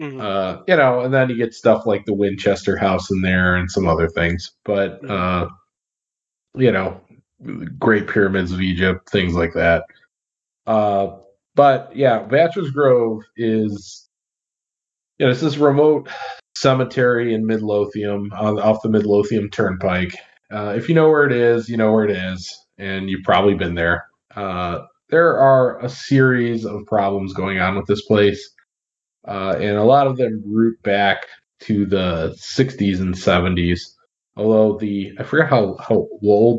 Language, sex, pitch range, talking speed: English, male, 95-110 Hz, 155 wpm